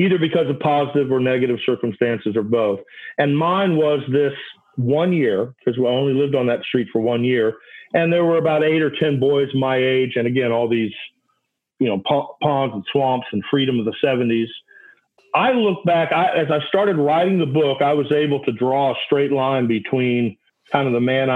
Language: English